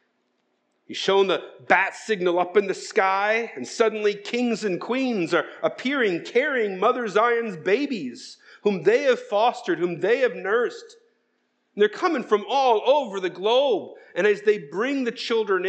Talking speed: 155 wpm